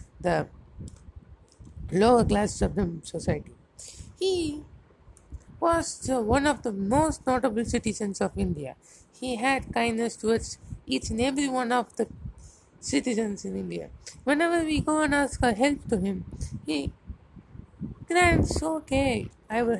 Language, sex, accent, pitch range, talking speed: English, female, Indian, 195-250 Hz, 130 wpm